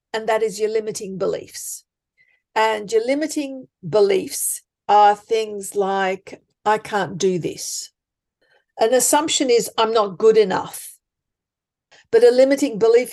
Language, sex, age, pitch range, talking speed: English, female, 50-69, 210-295 Hz, 130 wpm